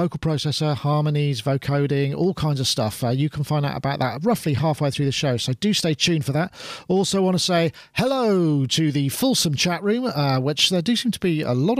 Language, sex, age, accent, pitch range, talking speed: English, male, 40-59, British, 140-180 Hz, 230 wpm